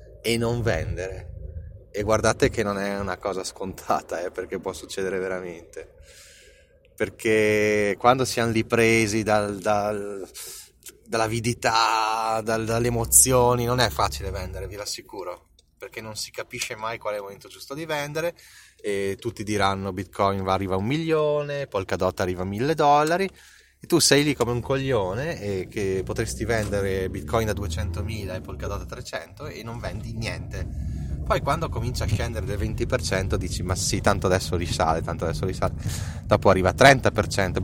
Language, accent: Italian, native